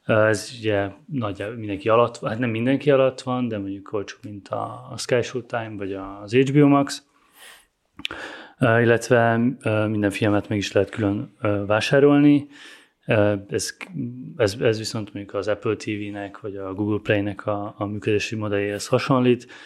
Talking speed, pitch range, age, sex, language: 140 wpm, 105-125 Hz, 30-49, male, Hungarian